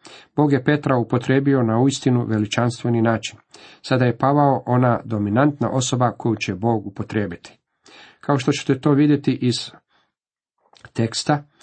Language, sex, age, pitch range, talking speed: Croatian, male, 50-69, 115-135 Hz, 130 wpm